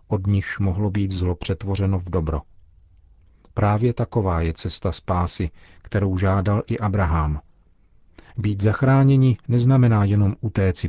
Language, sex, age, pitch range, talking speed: Czech, male, 40-59, 85-105 Hz, 120 wpm